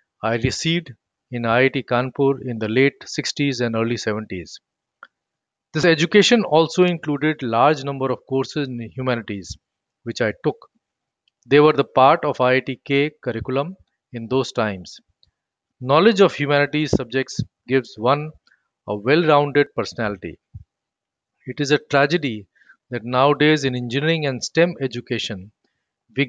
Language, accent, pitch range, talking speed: English, Indian, 115-150 Hz, 130 wpm